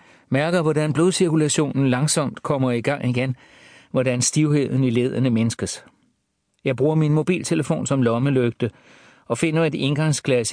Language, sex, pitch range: Danish, male, 120-150 Hz